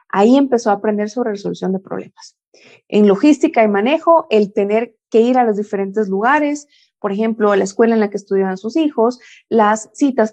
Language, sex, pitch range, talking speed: Spanish, female, 195-260 Hz, 190 wpm